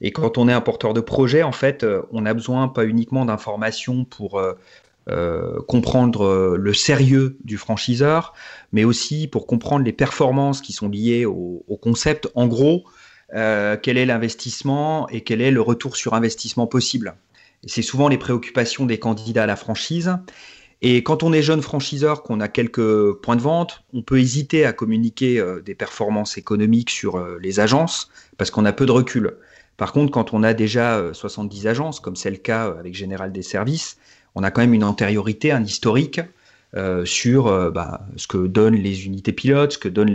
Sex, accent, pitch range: male, French, 105-135 Hz